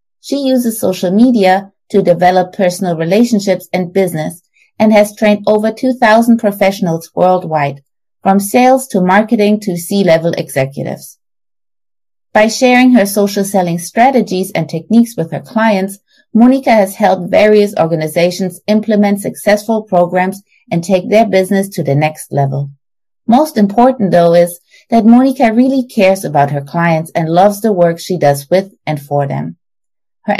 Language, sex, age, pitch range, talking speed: English, female, 30-49, 170-215 Hz, 145 wpm